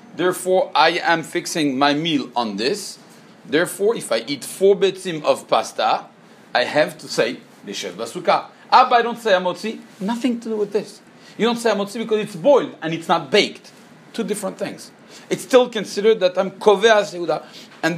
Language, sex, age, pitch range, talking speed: English, male, 40-59, 170-220 Hz, 185 wpm